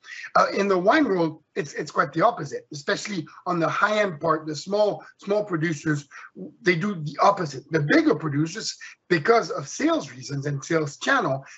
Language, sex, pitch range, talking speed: English, male, 155-220 Hz, 170 wpm